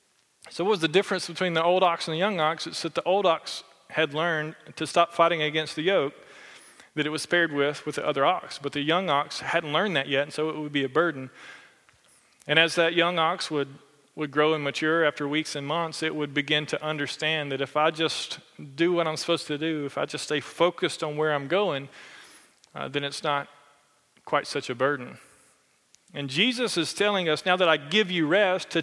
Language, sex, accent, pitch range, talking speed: English, male, American, 150-185 Hz, 225 wpm